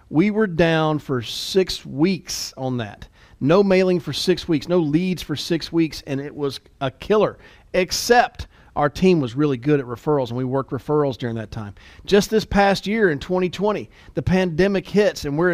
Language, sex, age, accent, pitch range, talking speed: English, male, 40-59, American, 150-195 Hz, 190 wpm